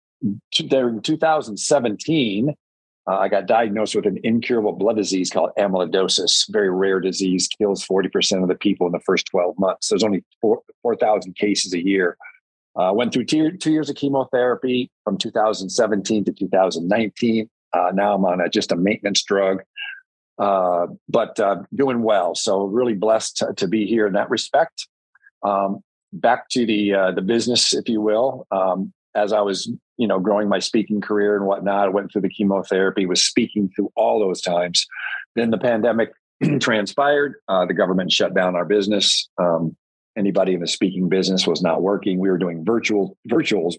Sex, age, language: male, 50-69, English